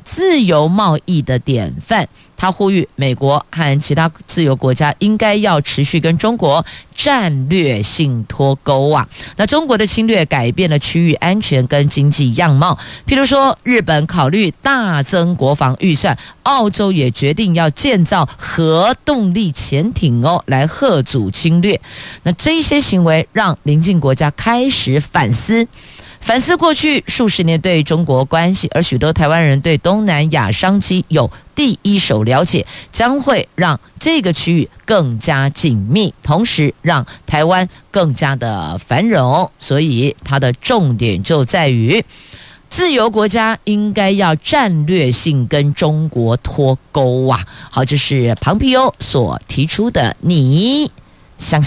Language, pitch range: Chinese, 140-205 Hz